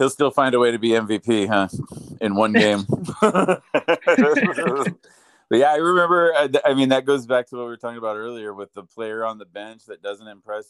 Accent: American